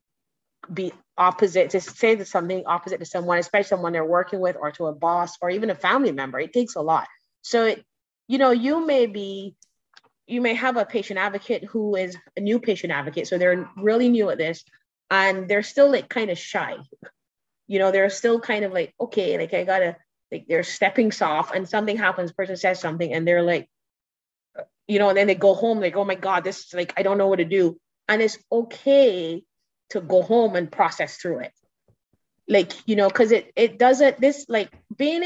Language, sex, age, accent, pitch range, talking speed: English, female, 30-49, American, 175-230 Hz, 210 wpm